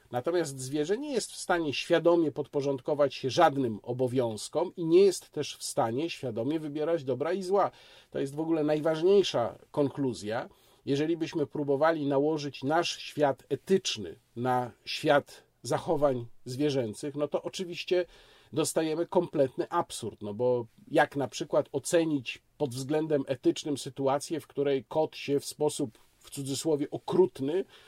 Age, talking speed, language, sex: 40-59, 140 wpm, Polish, male